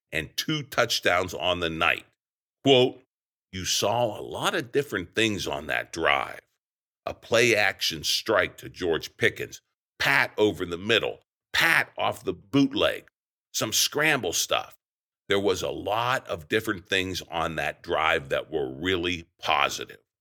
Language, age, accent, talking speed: English, 50-69, American, 145 wpm